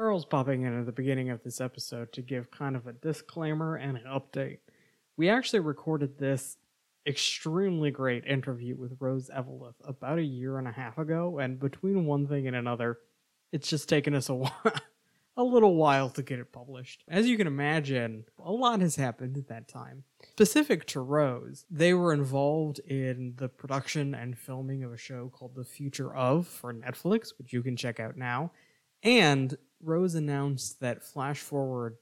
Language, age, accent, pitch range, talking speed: English, 20-39, American, 130-160 Hz, 180 wpm